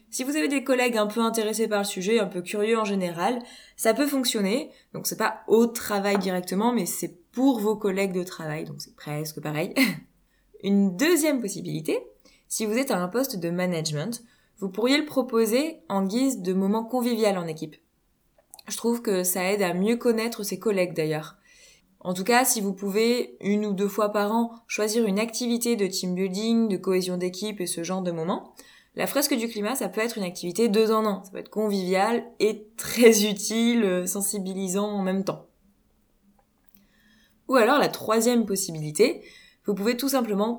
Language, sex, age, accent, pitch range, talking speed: French, female, 20-39, French, 185-230 Hz, 190 wpm